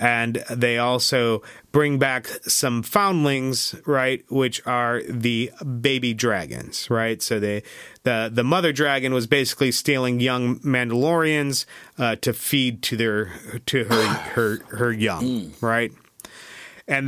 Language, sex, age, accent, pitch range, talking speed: English, male, 30-49, American, 110-135 Hz, 130 wpm